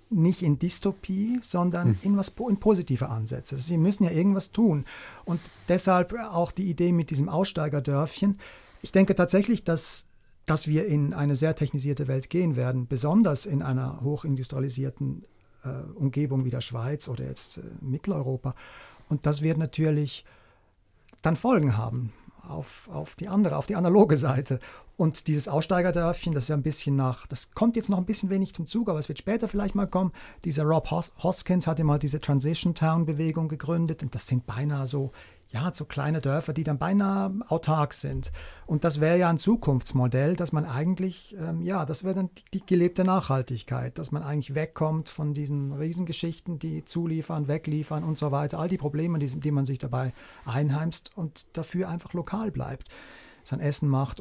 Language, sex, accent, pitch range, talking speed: German, male, German, 135-175 Hz, 175 wpm